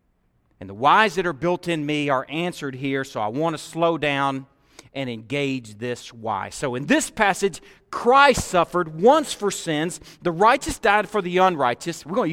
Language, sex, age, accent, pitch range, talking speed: English, male, 40-59, American, 125-195 Hz, 190 wpm